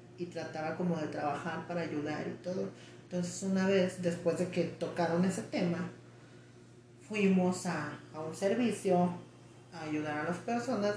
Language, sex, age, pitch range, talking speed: Spanish, female, 30-49, 170-205 Hz, 155 wpm